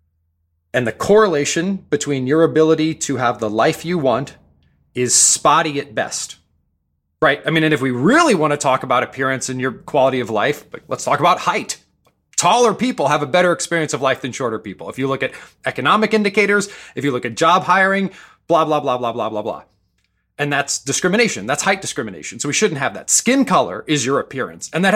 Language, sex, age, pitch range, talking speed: English, male, 30-49, 120-175 Hz, 205 wpm